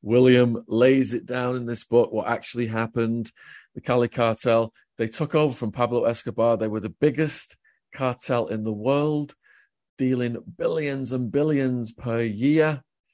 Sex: male